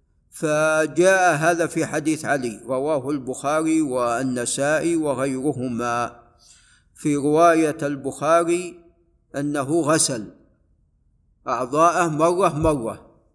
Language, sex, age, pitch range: Arabic, male, 50-69, 140-165 Hz